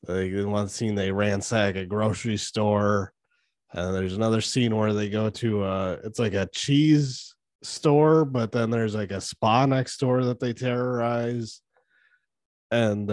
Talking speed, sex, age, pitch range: 160 wpm, male, 20-39, 95-130 Hz